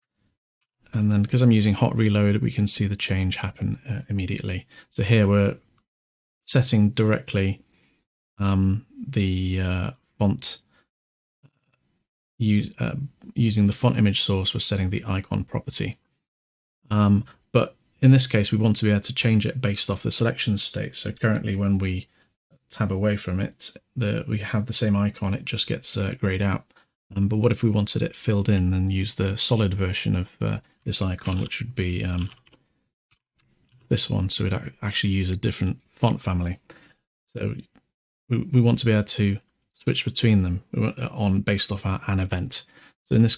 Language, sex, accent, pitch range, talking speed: English, male, British, 95-120 Hz, 175 wpm